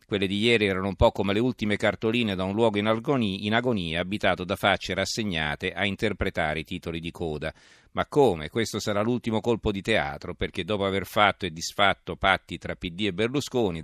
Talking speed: 195 wpm